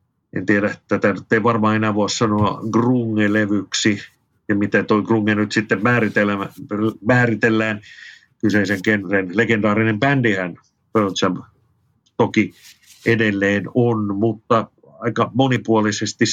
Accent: native